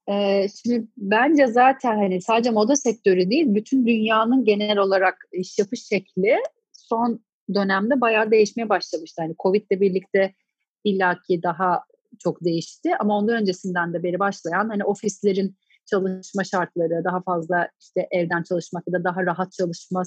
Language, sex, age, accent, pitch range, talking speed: Turkish, female, 30-49, native, 180-205 Hz, 145 wpm